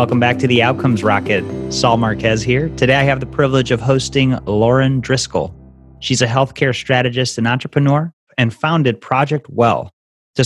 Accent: American